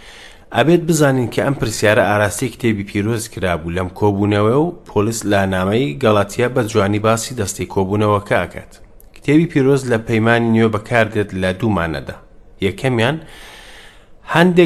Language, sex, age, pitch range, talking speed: English, male, 30-49, 100-125 Hz, 145 wpm